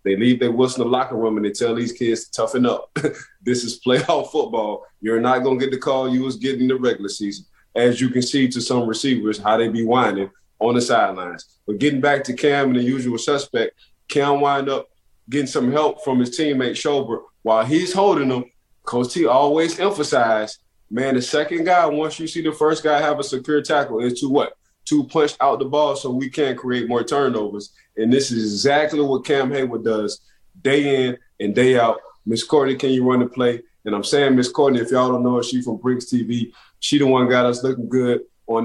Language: English